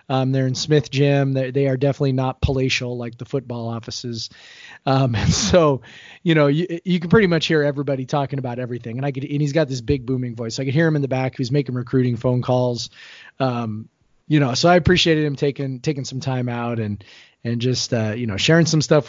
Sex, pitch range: male, 125-145 Hz